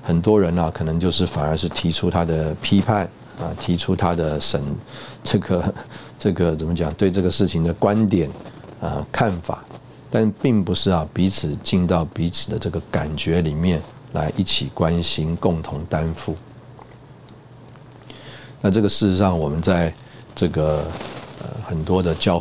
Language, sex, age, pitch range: Chinese, male, 50-69, 85-110 Hz